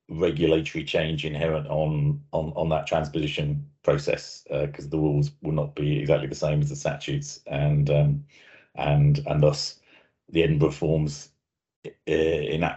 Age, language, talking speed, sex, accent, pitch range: 40-59, English, 150 wpm, male, British, 80-100 Hz